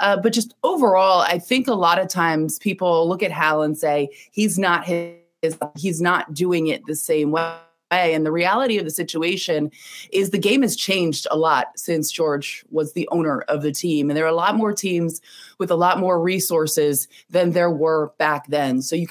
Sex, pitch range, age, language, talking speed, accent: female, 155-190 Hz, 20-39, English, 205 wpm, American